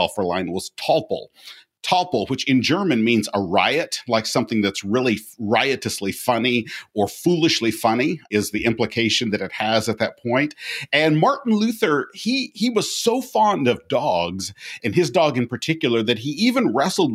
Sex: male